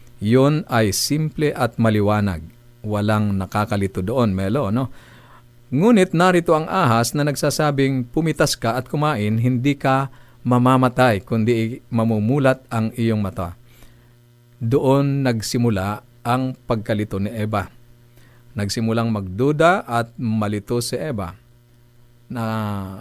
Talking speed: 105 wpm